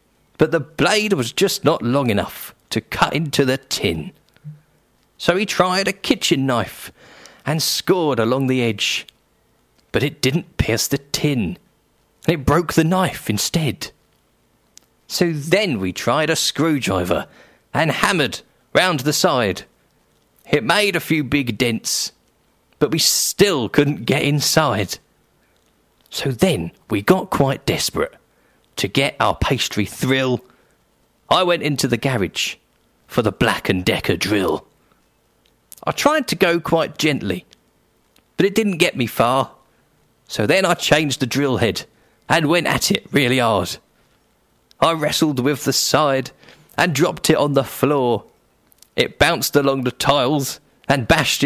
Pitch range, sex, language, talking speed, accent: 130-165 Hz, male, English, 140 wpm, British